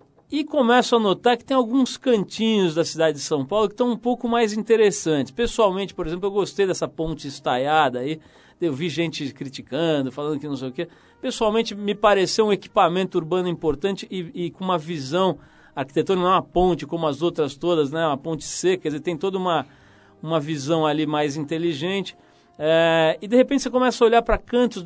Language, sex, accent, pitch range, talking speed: Portuguese, male, Brazilian, 150-195 Hz, 200 wpm